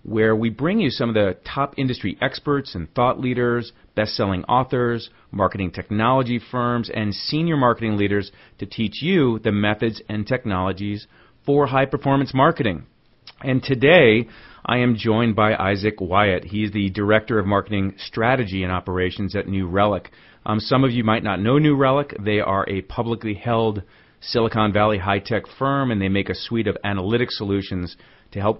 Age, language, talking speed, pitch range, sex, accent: 40-59, English, 170 wpm, 95-120 Hz, male, American